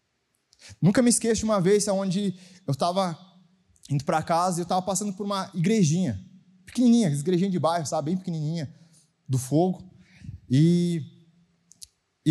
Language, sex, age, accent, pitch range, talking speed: Portuguese, male, 20-39, Brazilian, 130-185 Hz, 150 wpm